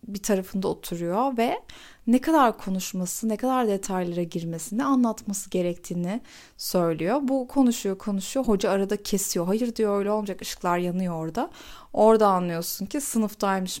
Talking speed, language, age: 135 wpm, Turkish, 30-49